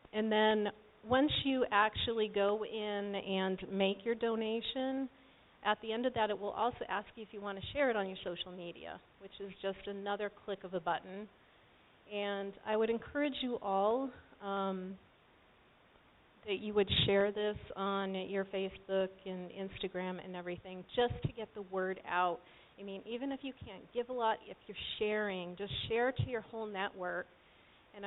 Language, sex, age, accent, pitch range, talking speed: English, female, 40-59, American, 190-215 Hz, 175 wpm